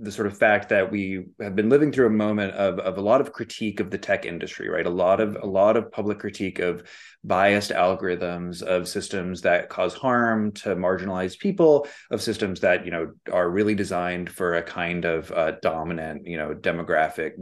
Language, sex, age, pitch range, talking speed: English, male, 20-39, 90-110 Hz, 200 wpm